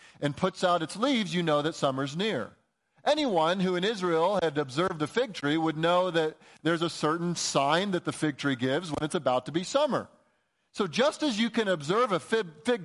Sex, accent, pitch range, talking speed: male, American, 150-210 Hz, 210 wpm